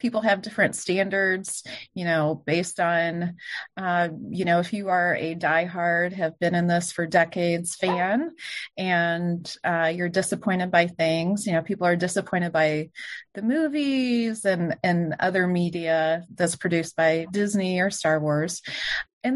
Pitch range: 175-230 Hz